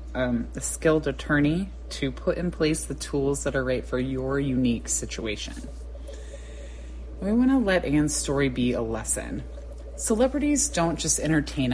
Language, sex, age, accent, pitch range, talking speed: English, female, 20-39, American, 125-175 Hz, 155 wpm